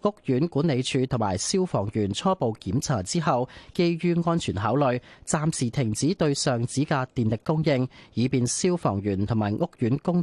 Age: 30-49